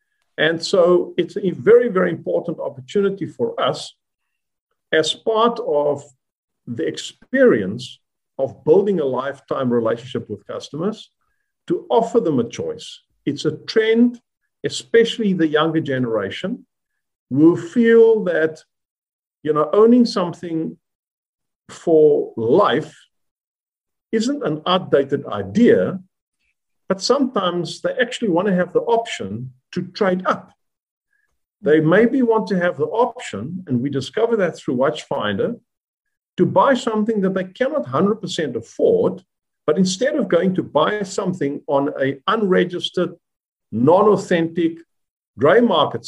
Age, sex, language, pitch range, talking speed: 50-69, male, English, 160-235 Hz, 120 wpm